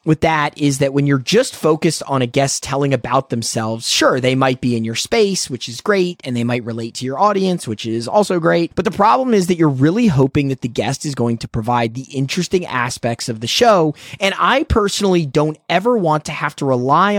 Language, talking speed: English, 230 wpm